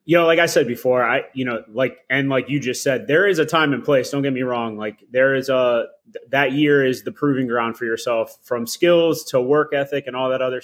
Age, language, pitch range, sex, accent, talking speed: 20-39, English, 115-140 Hz, male, American, 260 wpm